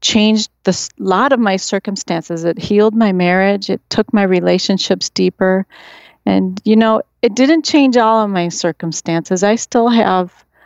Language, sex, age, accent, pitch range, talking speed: English, female, 40-59, American, 170-210 Hz, 160 wpm